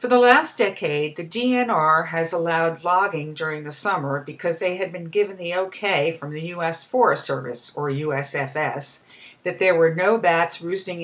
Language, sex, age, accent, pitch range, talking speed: English, female, 50-69, American, 155-215 Hz, 175 wpm